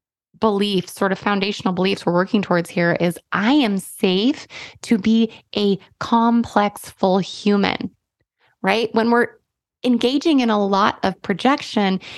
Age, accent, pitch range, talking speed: 20-39, American, 180-235 Hz, 140 wpm